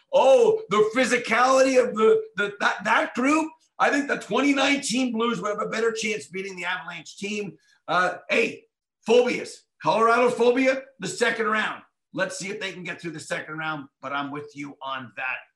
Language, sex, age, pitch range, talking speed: English, male, 50-69, 195-245 Hz, 180 wpm